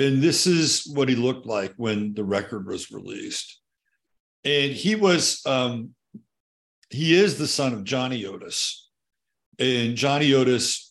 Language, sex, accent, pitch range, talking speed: English, male, American, 100-130 Hz, 145 wpm